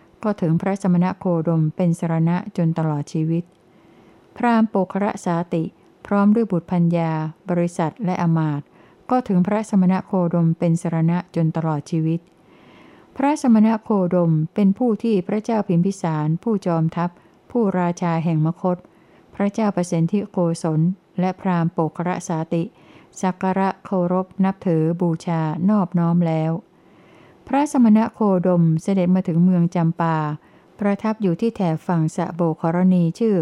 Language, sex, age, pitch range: Thai, female, 60-79, 165-195 Hz